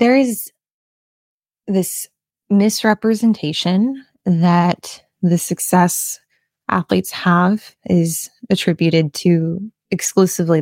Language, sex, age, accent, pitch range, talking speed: English, female, 20-39, American, 165-195 Hz, 75 wpm